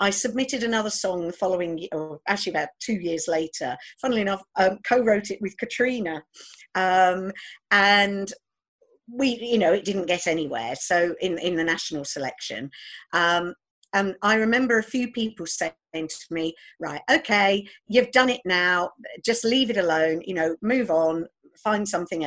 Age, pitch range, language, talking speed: 50-69, 180-235 Hz, English, 160 wpm